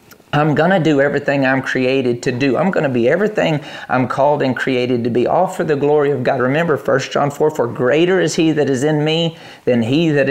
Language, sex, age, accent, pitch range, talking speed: English, male, 40-59, American, 120-140 Hz, 240 wpm